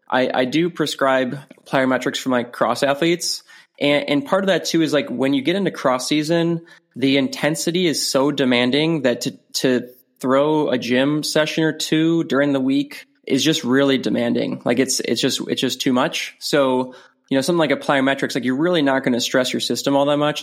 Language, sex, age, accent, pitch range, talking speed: English, male, 20-39, American, 125-150 Hz, 210 wpm